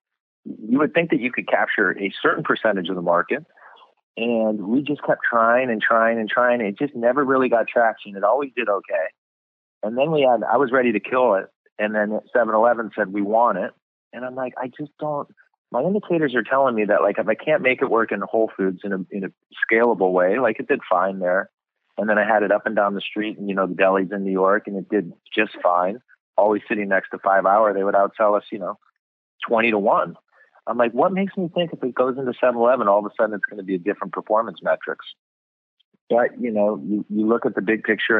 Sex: male